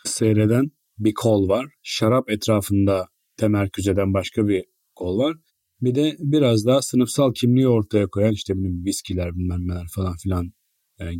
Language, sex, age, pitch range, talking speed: Turkish, male, 40-59, 105-130 Hz, 140 wpm